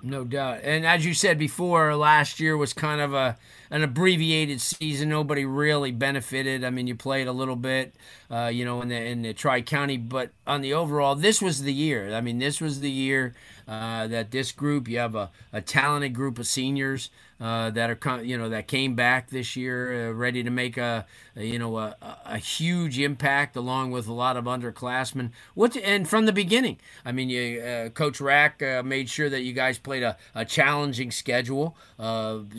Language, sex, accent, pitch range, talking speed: English, male, American, 120-145 Hz, 205 wpm